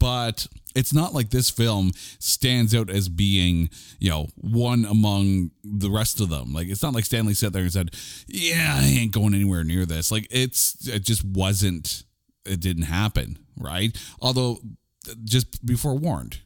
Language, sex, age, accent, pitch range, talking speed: English, male, 30-49, American, 90-120 Hz, 170 wpm